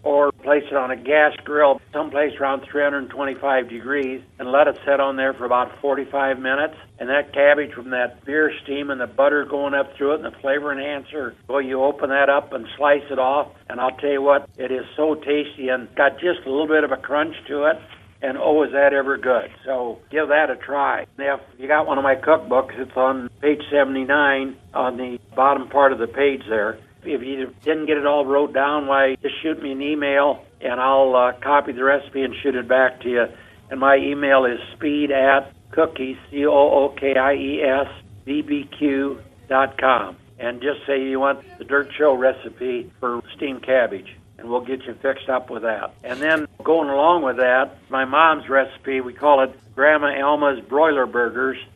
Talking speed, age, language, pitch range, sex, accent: 195 wpm, 60-79, English, 130-145 Hz, male, American